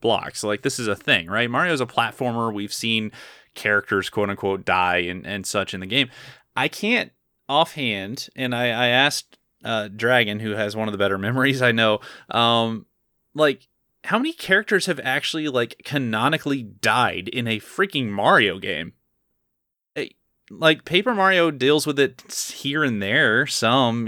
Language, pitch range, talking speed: English, 105-135 Hz, 160 wpm